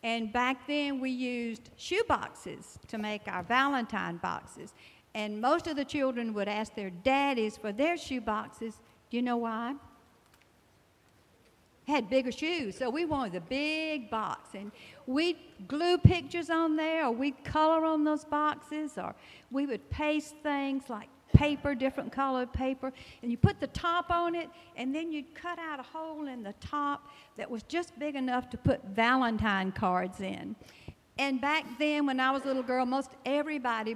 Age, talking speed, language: 60-79, 170 wpm, English